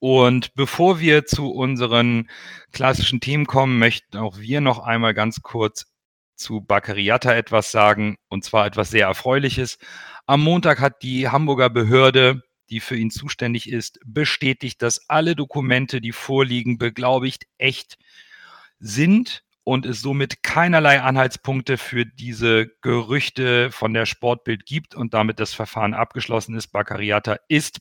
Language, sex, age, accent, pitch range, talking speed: German, male, 40-59, German, 110-130 Hz, 140 wpm